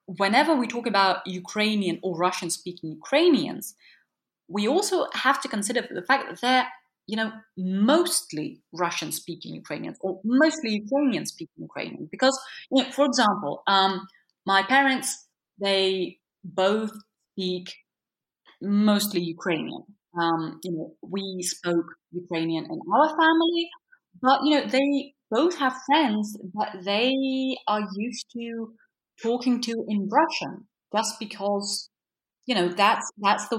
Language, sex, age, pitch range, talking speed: English, female, 30-49, 185-260 Hz, 125 wpm